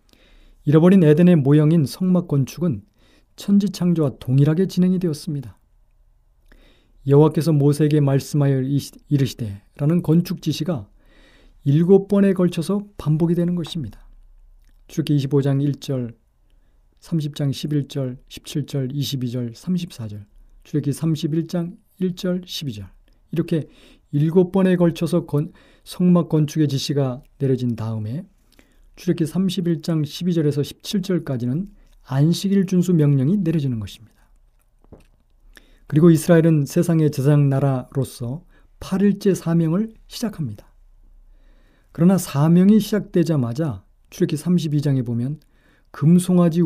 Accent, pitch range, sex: native, 130-175 Hz, male